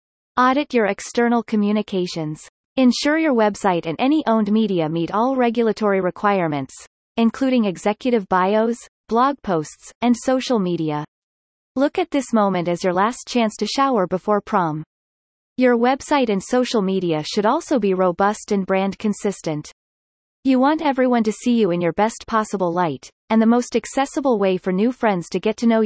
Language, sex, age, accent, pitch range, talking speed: English, female, 30-49, American, 185-245 Hz, 160 wpm